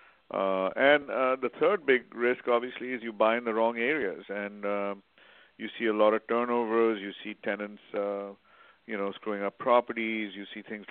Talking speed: 195 wpm